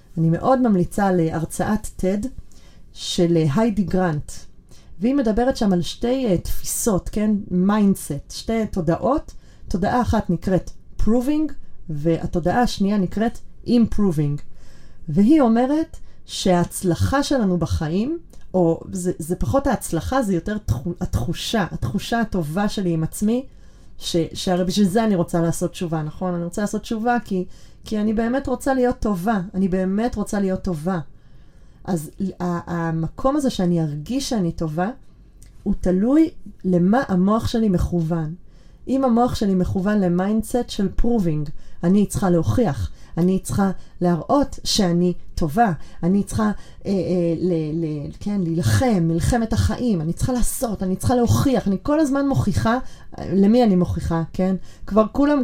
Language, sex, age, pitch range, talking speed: Hebrew, female, 30-49, 175-235 Hz, 130 wpm